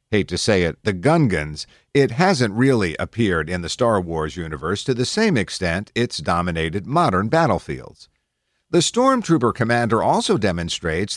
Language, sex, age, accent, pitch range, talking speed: English, male, 50-69, American, 90-130 Hz, 150 wpm